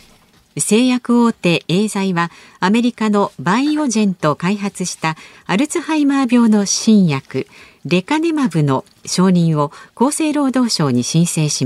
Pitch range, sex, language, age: 160-235 Hz, female, Japanese, 50-69